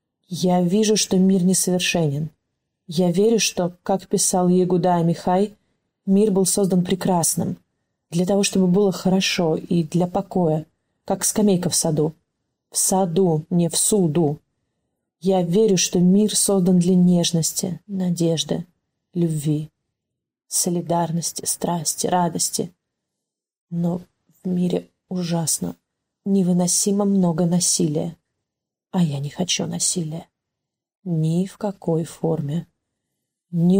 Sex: female